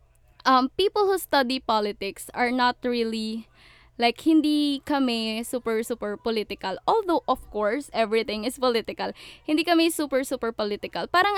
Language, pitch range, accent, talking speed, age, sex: Filipino, 215-275 Hz, native, 135 wpm, 10-29, female